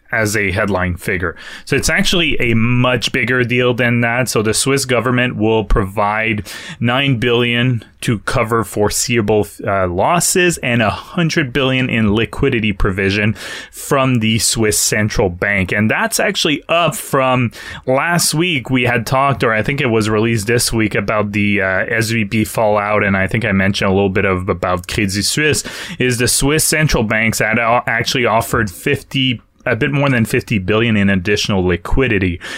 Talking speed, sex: 165 wpm, male